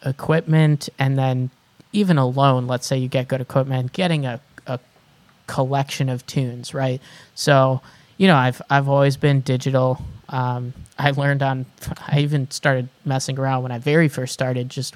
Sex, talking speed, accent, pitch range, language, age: male, 165 wpm, American, 130-145 Hz, English, 20-39